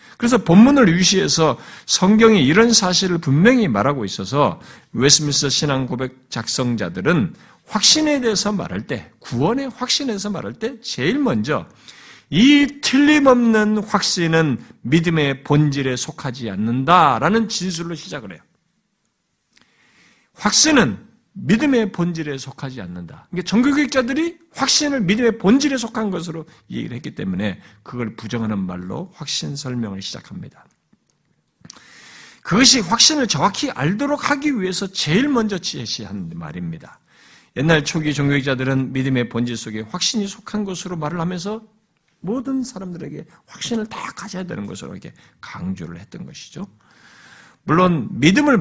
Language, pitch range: Korean, 140-225 Hz